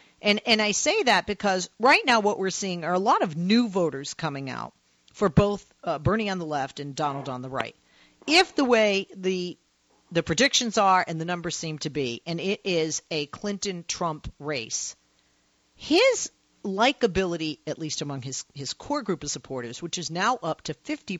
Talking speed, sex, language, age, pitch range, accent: 190 wpm, female, English, 50-69, 155-215 Hz, American